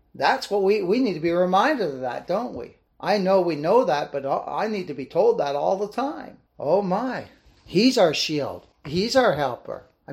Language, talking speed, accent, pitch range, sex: English, 215 wpm, American, 150-200 Hz, male